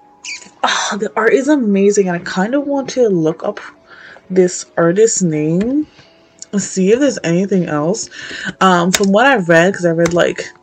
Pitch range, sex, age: 170-215 Hz, female, 20-39